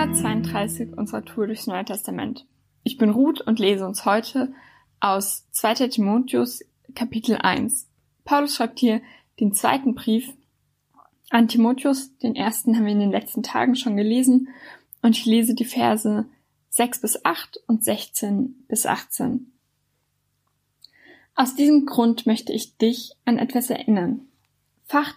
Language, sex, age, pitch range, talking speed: German, female, 10-29, 215-250 Hz, 140 wpm